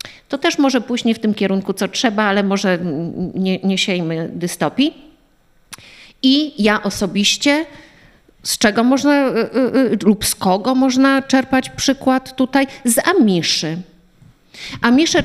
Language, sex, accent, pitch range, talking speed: Polish, female, native, 195-250 Hz, 130 wpm